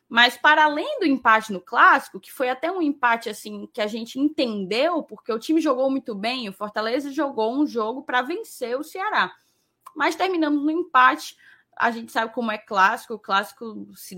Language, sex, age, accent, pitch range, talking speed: Portuguese, female, 10-29, Brazilian, 210-290 Hz, 190 wpm